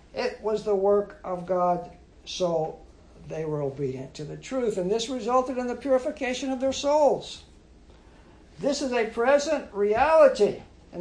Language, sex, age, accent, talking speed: English, male, 60-79, American, 155 wpm